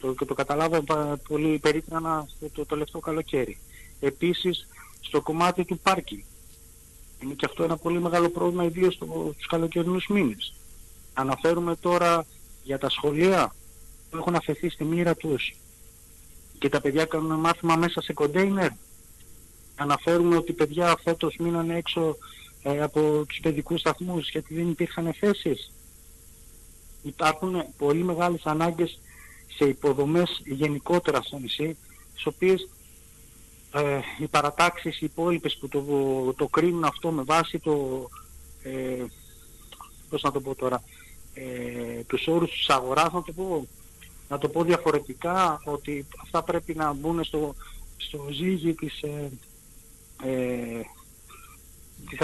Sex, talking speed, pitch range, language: male, 125 wpm, 125-165 Hz, Greek